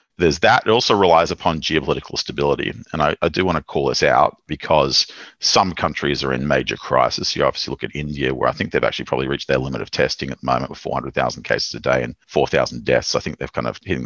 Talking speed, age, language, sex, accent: 260 wpm, 40-59, English, male, Australian